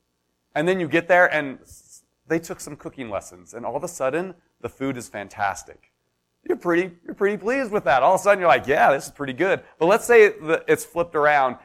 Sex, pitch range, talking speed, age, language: male, 125-175 Hz, 230 wpm, 30-49, English